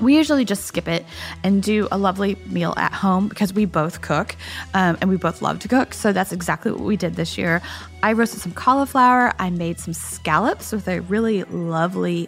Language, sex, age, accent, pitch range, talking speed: English, female, 10-29, American, 175-235 Hz, 210 wpm